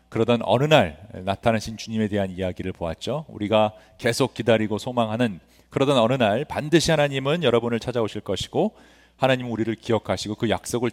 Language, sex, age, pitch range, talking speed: English, male, 40-59, 100-140 Hz, 135 wpm